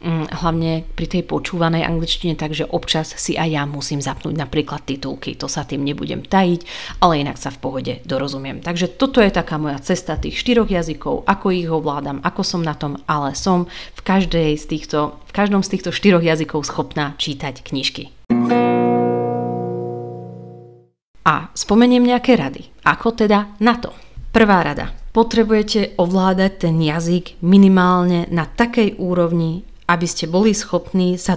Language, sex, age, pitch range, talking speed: Slovak, female, 30-49, 150-180 Hz, 150 wpm